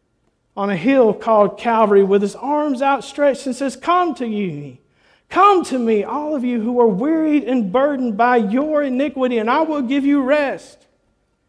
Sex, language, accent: male, English, American